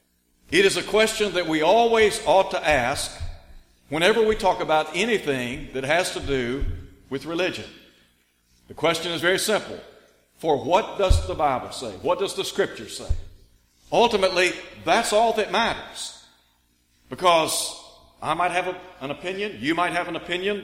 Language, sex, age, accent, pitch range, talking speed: English, male, 60-79, American, 135-185 Hz, 155 wpm